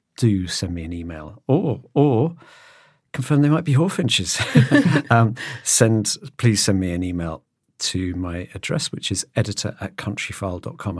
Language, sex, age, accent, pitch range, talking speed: English, male, 50-69, British, 95-115 Hz, 145 wpm